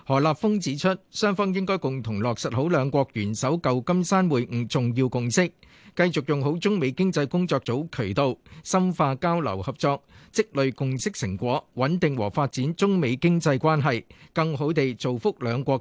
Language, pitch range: Chinese, 130-170 Hz